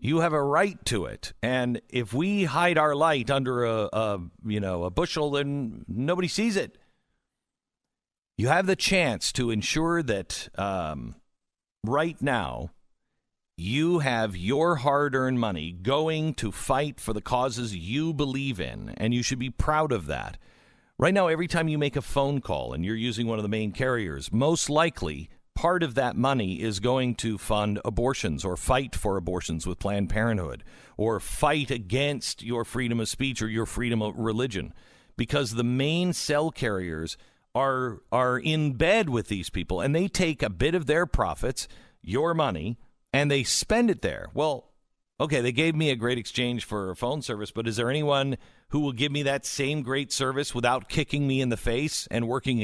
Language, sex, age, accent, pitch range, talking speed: English, male, 50-69, American, 110-145 Hz, 180 wpm